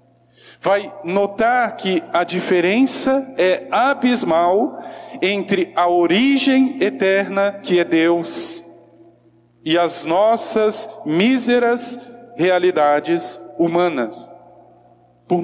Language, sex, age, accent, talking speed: Portuguese, male, 40-59, Brazilian, 80 wpm